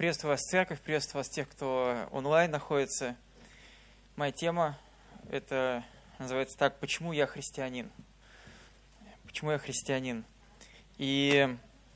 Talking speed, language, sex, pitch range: 115 wpm, Russian, male, 130-155 Hz